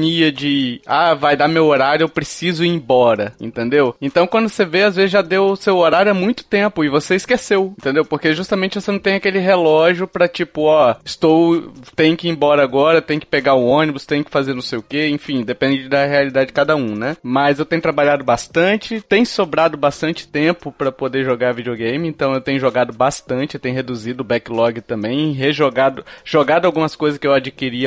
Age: 20-39